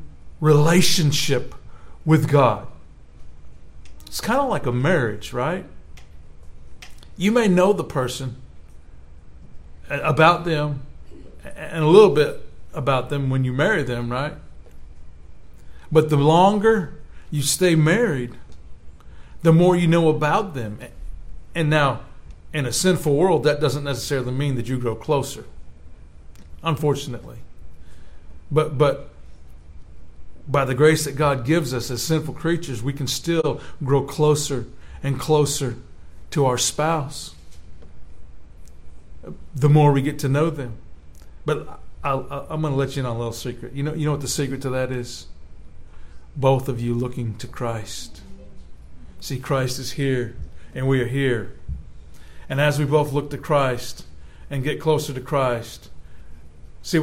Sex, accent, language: male, American, English